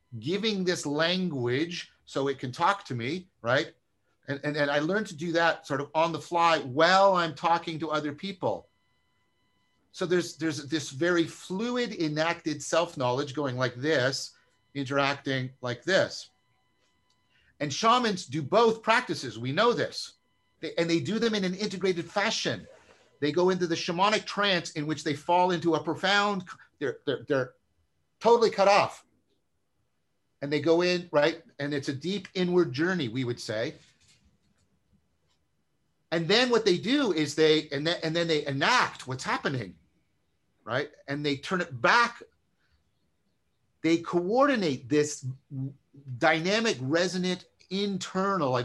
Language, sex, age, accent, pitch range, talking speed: English, male, 50-69, American, 140-185 Hz, 150 wpm